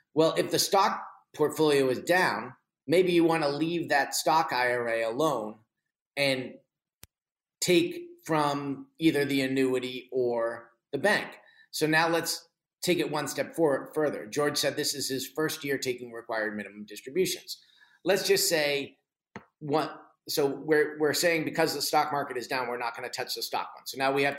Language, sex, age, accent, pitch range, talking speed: English, male, 40-59, American, 130-155 Hz, 175 wpm